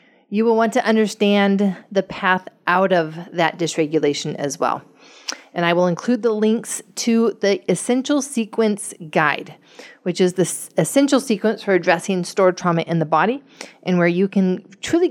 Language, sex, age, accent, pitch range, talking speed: English, female, 40-59, American, 165-210 Hz, 165 wpm